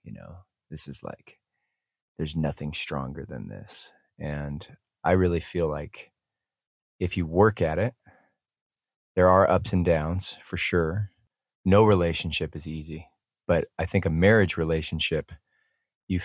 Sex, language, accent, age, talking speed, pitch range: male, English, American, 30-49, 140 wpm, 80-95 Hz